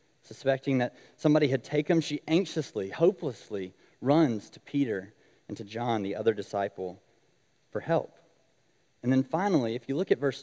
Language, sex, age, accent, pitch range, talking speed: English, male, 30-49, American, 110-150 Hz, 160 wpm